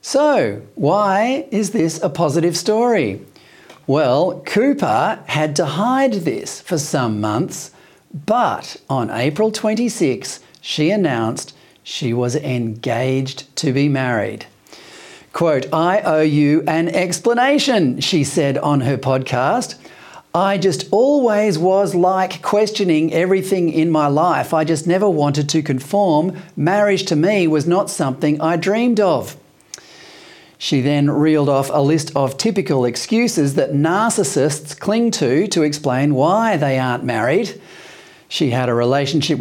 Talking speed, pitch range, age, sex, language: 130 wpm, 140-200 Hz, 40-59, male, English